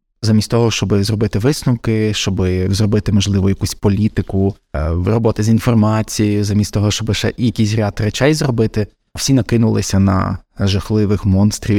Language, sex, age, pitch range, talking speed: Ukrainian, male, 20-39, 105-130 Hz, 130 wpm